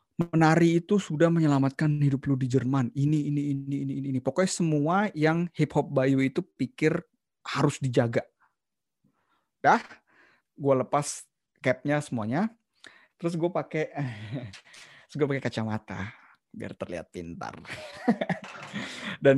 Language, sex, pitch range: Indonesian, male, 125-165 Hz